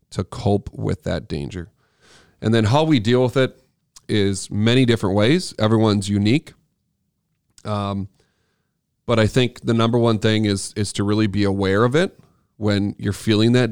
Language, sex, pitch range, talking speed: English, male, 100-115 Hz, 165 wpm